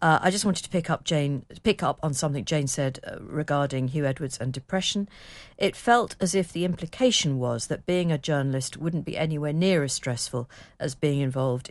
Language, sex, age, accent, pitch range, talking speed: English, female, 50-69, British, 130-160 Hz, 200 wpm